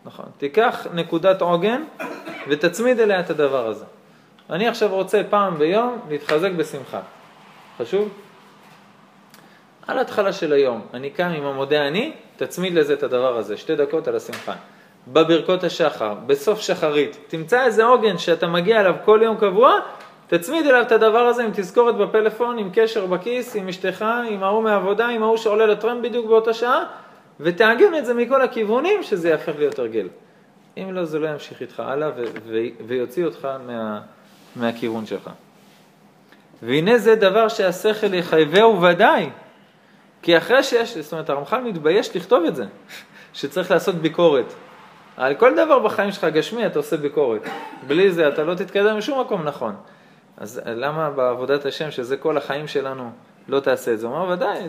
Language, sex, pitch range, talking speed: Hebrew, male, 160-230 Hz, 160 wpm